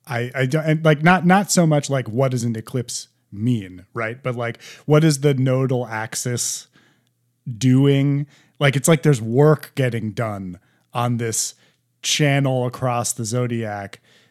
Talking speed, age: 155 wpm, 30-49